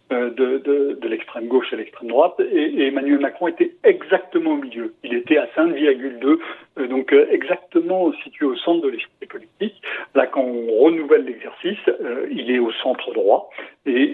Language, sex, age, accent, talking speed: French, male, 60-79, French, 165 wpm